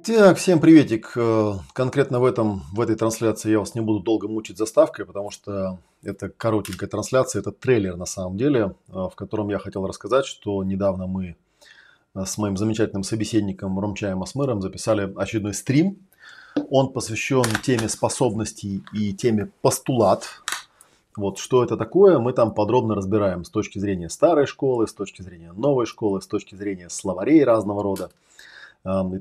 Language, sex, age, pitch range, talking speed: Russian, male, 30-49, 100-120 Hz, 155 wpm